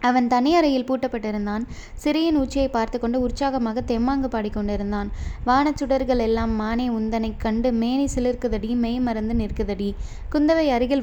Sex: female